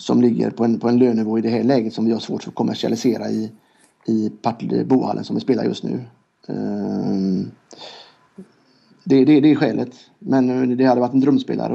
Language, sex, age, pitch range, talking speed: Swedish, male, 30-49, 115-135 Hz, 210 wpm